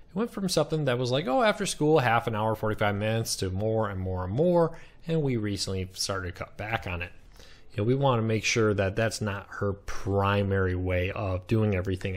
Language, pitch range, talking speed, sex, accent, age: English, 100-140 Hz, 220 wpm, male, American, 30-49